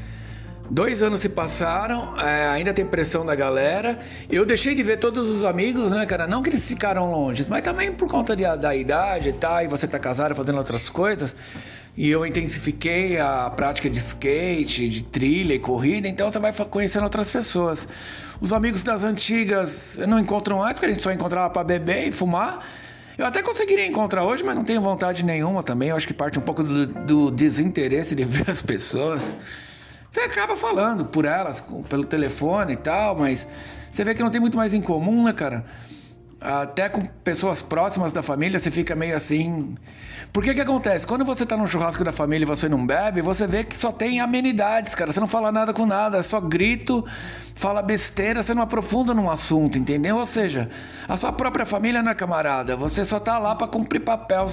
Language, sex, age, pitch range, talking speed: Portuguese, male, 60-79, 150-220 Hz, 200 wpm